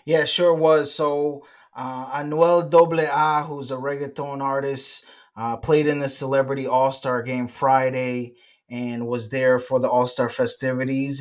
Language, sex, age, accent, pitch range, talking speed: English, male, 20-39, American, 125-140 Hz, 155 wpm